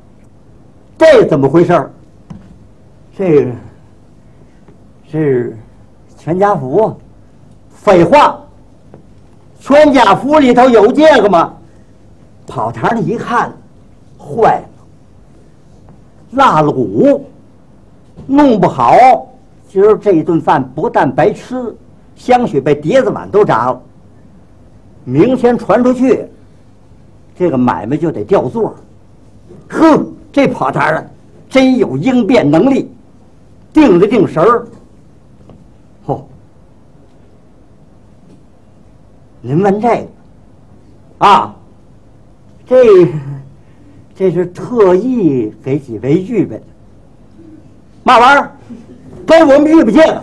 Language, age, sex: Chinese, 50-69, male